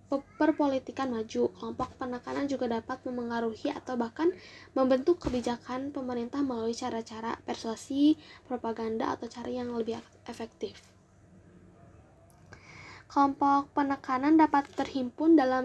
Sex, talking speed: female, 100 wpm